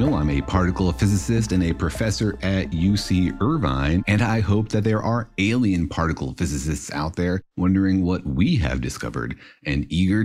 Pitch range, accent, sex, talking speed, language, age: 80-120 Hz, American, male, 165 wpm, English, 50-69